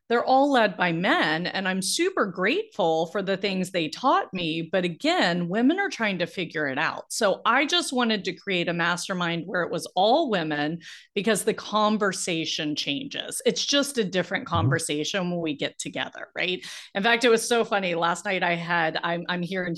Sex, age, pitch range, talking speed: female, 30-49, 175-245 Hz, 195 wpm